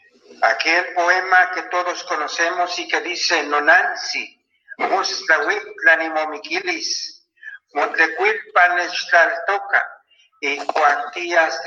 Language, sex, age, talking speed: Spanish, male, 60-79, 95 wpm